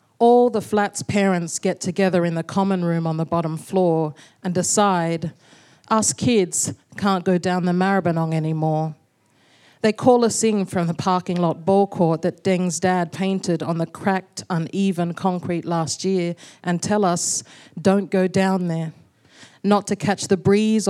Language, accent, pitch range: English, Australian, 170-195 Hz